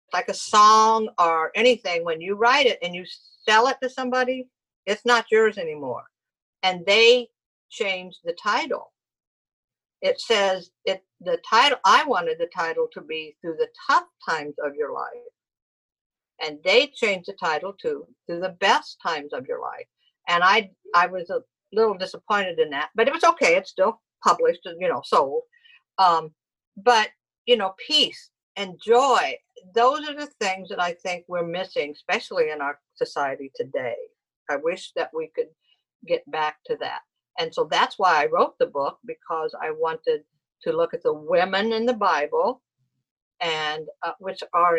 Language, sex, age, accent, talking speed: English, female, 50-69, American, 170 wpm